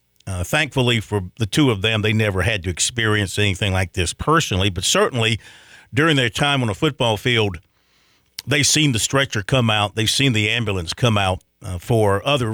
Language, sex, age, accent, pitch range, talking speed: English, male, 50-69, American, 100-130 Hz, 190 wpm